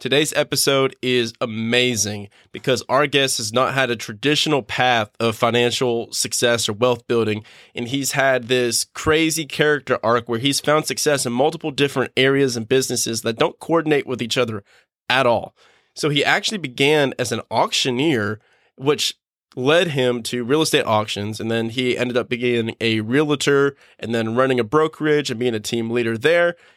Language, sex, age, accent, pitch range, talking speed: English, male, 20-39, American, 115-145 Hz, 175 wpm